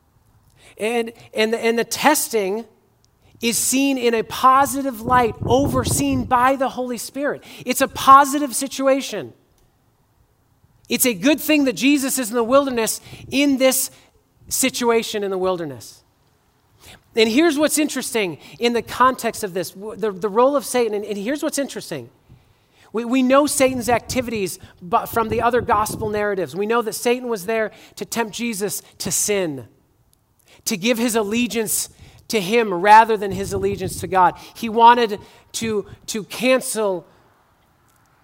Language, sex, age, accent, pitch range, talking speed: English, male, 40-59, American, 175-250 Hz, 150 wpm